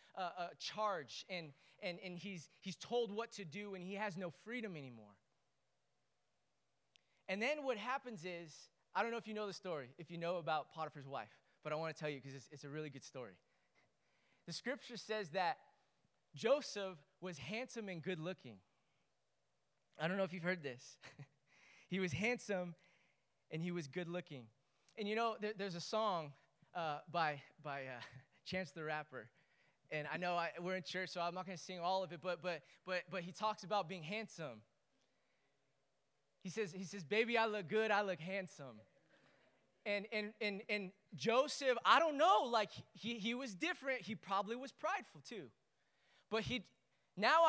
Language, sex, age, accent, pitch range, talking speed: English, male, 20-39, American, 170-220 Hz, 185 wpm